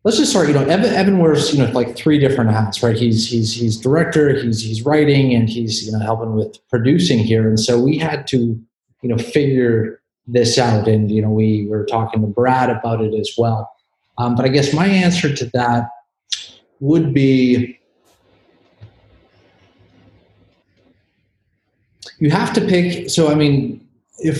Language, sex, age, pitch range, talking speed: English, male, 30-49, 110-135 Hz, 170 wpm